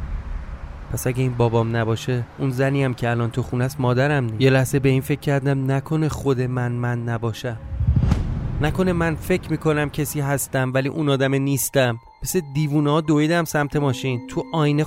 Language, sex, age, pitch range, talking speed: Persian, male, 30-49, 105-140 Hz, 175 wpm